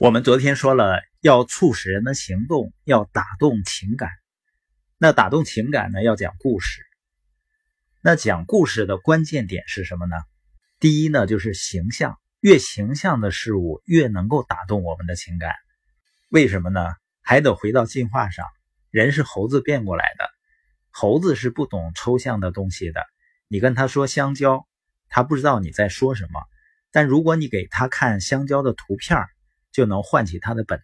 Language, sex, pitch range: Chinese, male, 95-145 Hz